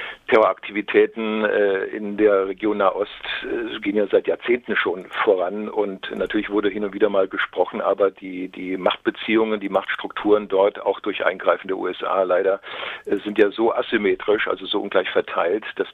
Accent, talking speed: German, 155 wpm